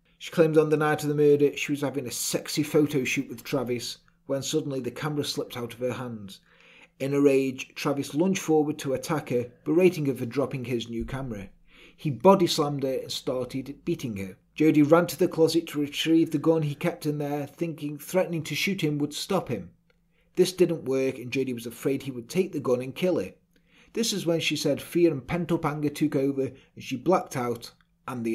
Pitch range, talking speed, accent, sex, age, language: 130-165 Hz, 220 wpm, British, male, 30-49, English